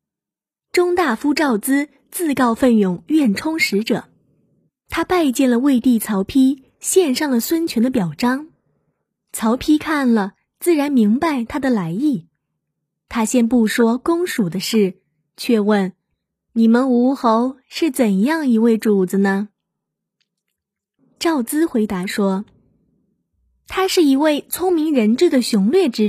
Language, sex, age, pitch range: Chinese, female, 20-39, 195-295 Hz